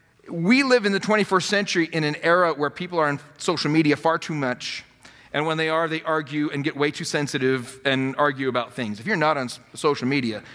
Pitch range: 130-175 Hz